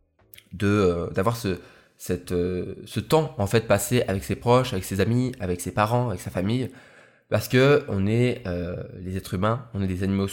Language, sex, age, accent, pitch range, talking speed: French, male, 20-39, French, 100-125 Hz, 200 wpm